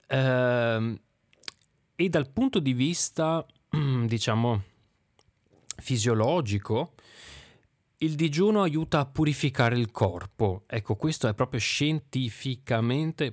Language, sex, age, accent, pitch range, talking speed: Italian, male, 30-49, native, 110-145 Hz, 85 wpm